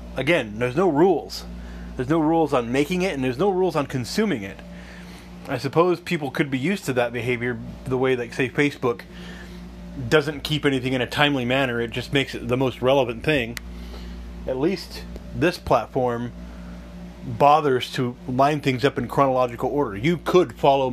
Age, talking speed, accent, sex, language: 30-49, 175 wpm, American, male, English